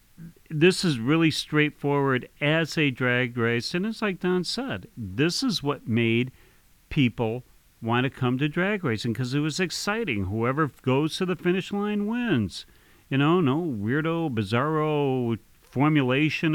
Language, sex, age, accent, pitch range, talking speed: English, male, 40-59, American, 125-170 Hz, 150 wpm